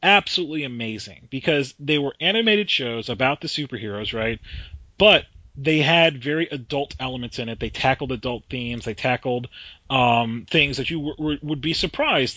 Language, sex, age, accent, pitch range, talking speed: English, male, 30-49, American, 115-150 Hz, 165 wpm